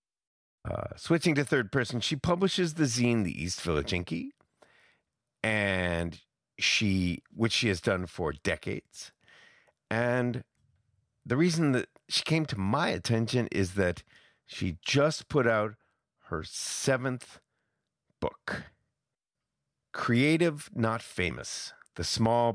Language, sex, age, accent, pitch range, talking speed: English, male, 50-69, American, 95-125 Hz, 115 wpm